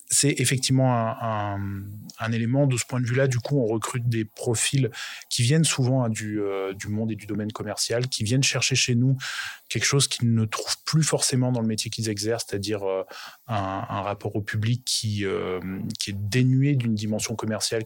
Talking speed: 205 wpm